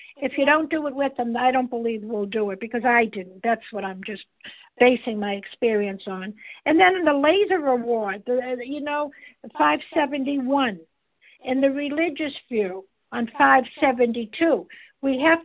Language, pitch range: English, 230-295 Hz